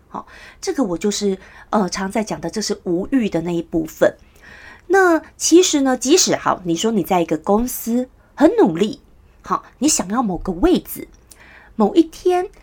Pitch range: 185-290 Hz